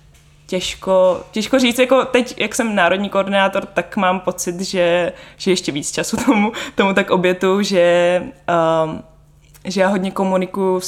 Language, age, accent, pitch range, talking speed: Czech, 20-39, native, 170-195 Hz, 145 wpm